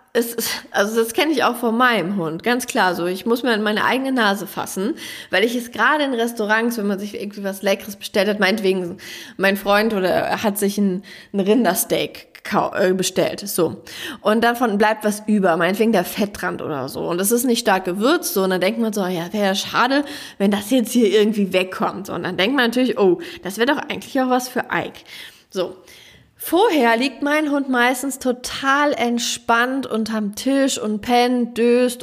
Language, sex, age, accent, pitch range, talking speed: German, female, 20-39, German, 195-250 Hz, 200 wpm